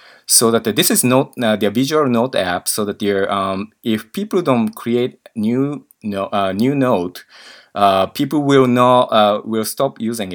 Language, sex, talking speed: English, male, 180 wpm